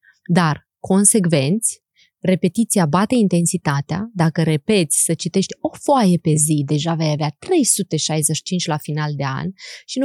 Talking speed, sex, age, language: 135 wpm, female, 20-39, Romanian